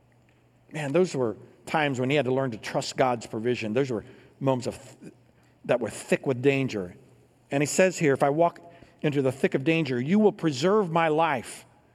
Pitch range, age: 120-145 Hz, 60-79